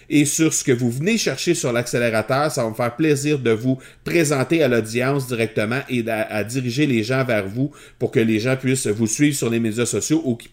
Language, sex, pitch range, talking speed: French, male, 115-145 Hz, 235 wpm